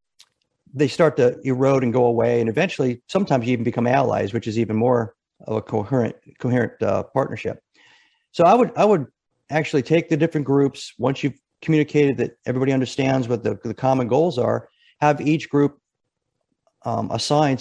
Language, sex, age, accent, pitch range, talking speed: English, male, 50-69, American, 120-145 Hz, 170 wpm